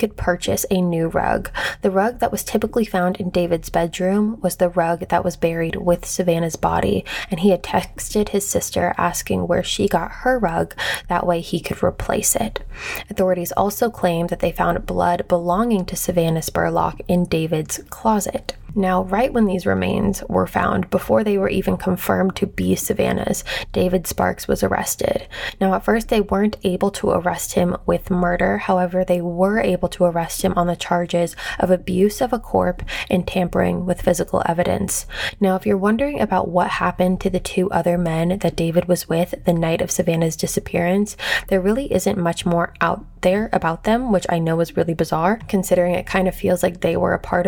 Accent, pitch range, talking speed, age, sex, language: American, 175-195 Hz, 190 wpm, 20-39, female, English